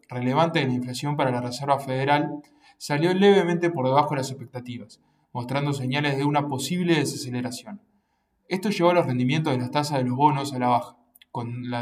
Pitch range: 130-155 Hz